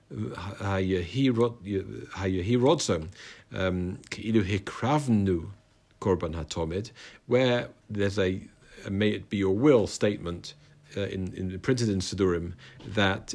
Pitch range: 95-120 Hz